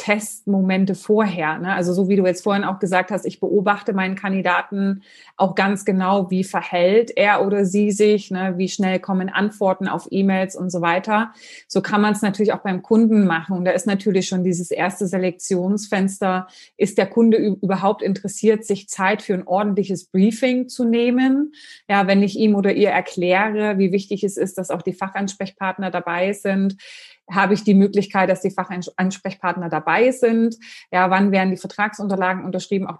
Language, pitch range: German, 185-205 Hz